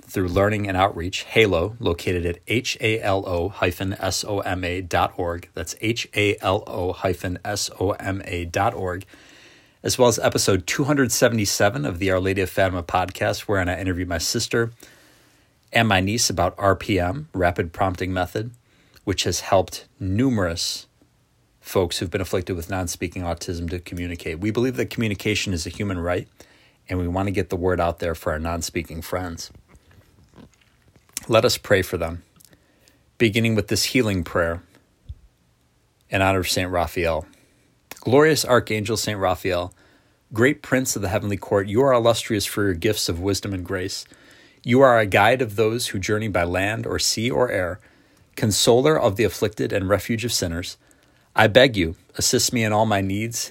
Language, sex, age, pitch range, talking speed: English, male, 40-59, 90-110 Hz, 155 wpm